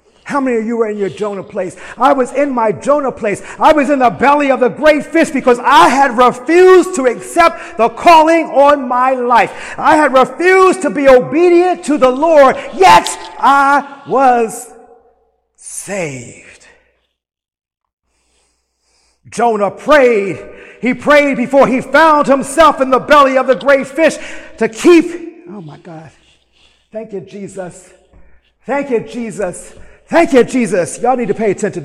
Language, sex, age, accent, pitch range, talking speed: English, male, 50-69, American, 220-305 Hz, 155 wpm